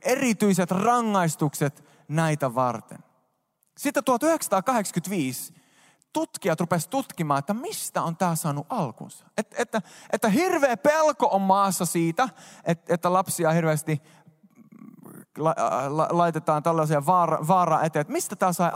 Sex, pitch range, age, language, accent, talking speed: male, 150-200 Hz, 20-39, Finnish, native, 120 wpm